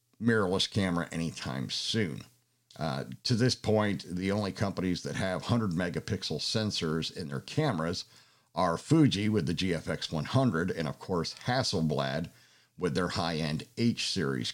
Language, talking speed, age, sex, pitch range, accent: English, 140 wpm, 50-69, male, 90-120 Hz, American